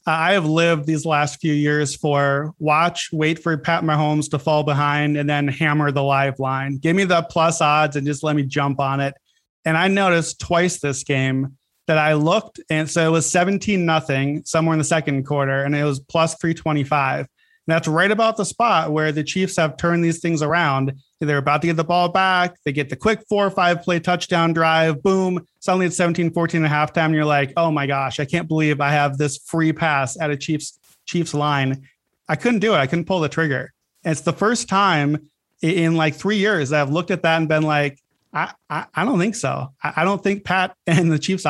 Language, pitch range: English, 145-170 Hz